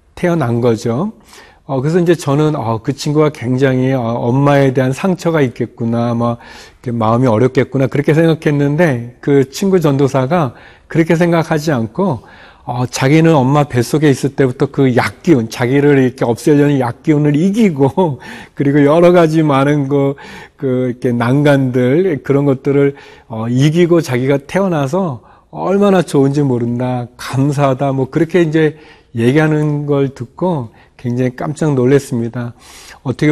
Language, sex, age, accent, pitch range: Korean, male, 40-59, native, 125-155 Hz